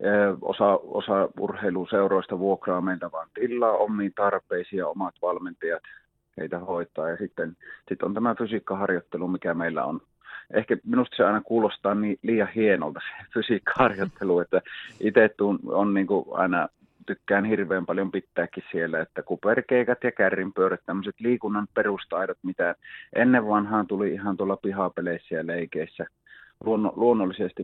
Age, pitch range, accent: 30-49, 90-105 Hz, native